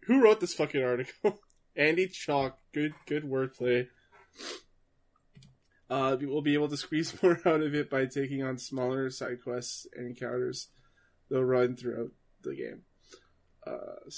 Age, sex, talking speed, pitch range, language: 20-39, male, 150 wpm, 120-135 Hz, English